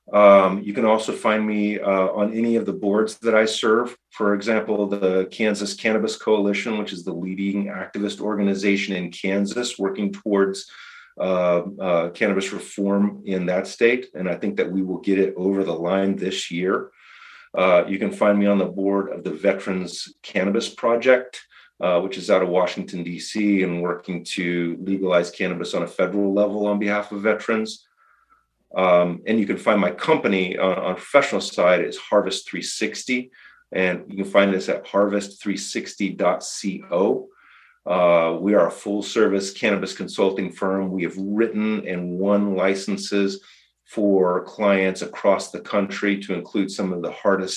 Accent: American